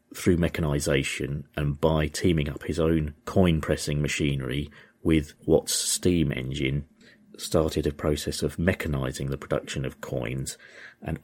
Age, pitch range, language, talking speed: 40-59, 70-80 Hz, English, 135 wpm